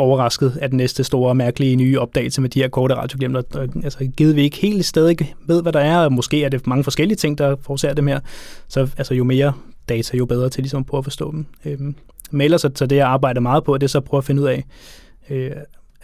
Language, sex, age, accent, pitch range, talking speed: Danish, male, 20-39, native, 130-145 Hz, 250 wpm